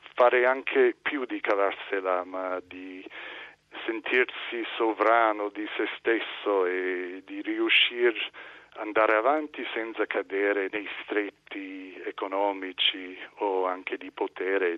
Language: Italian